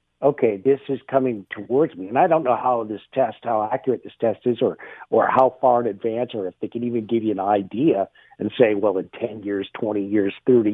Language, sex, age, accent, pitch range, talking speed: English, male, 50-69, American, 110-135 Hz, 235 wpm